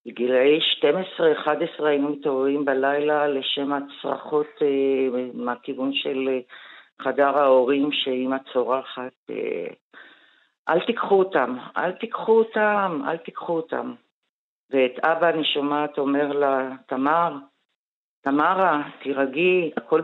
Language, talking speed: Hebrew, 90 wpm